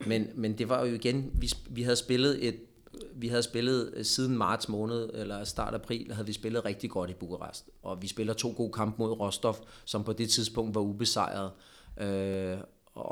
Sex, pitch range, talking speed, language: male, 100-115 Hz, 190 wpm, Danish